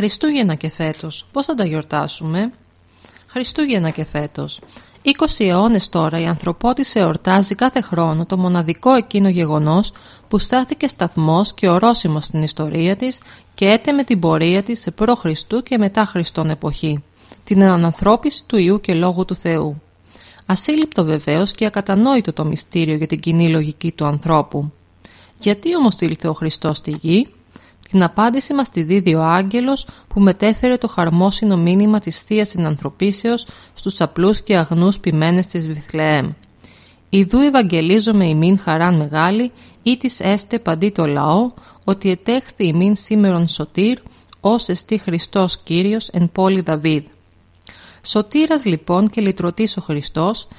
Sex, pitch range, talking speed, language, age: female, 160-215 Hz, 140 wpm, Greek, 30-49